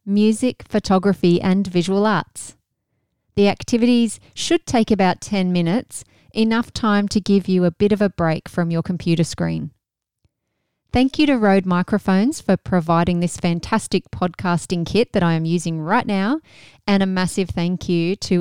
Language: English